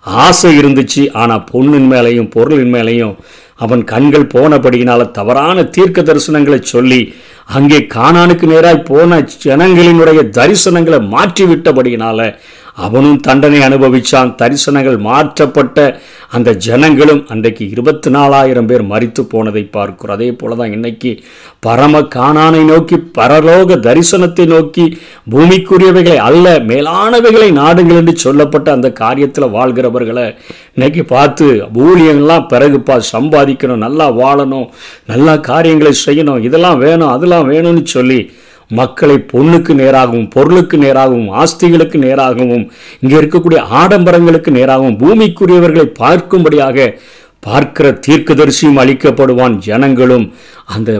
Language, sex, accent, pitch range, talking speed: Tamil, male, native, 120-160 Hz, 100 wpm